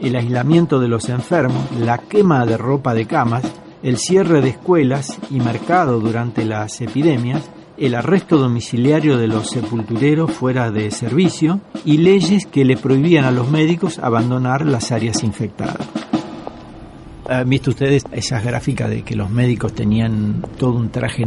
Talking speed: 150 wpm